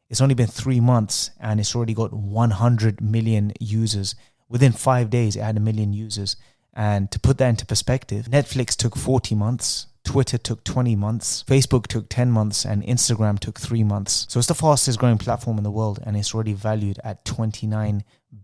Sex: male